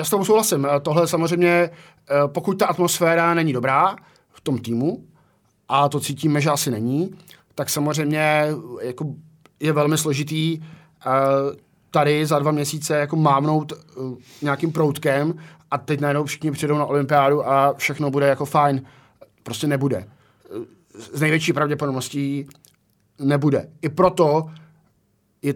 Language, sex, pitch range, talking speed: Czech, male, 135-155 Hz, 130 wpm